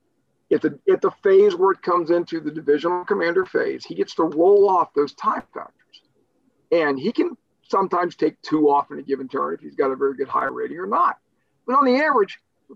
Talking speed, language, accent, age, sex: 215 wpm, English, American, 50-69, male